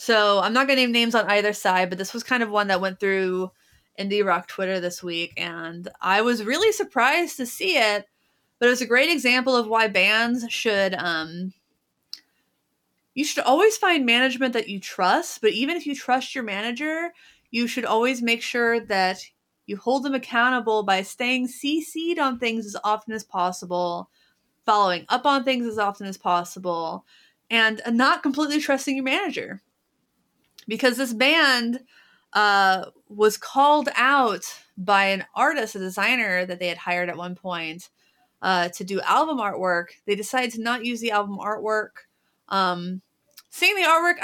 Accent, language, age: American, English, 30-49